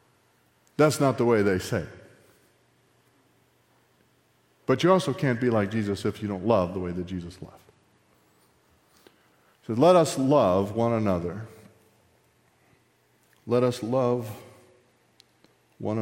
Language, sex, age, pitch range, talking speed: English, male, 50-69, 95-140 Hz, 125 wpm